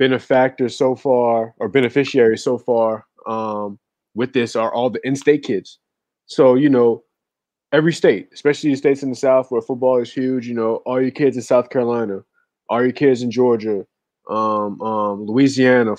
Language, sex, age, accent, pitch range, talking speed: English, male, 20-39, American, 105-125 Hz, 175 wpm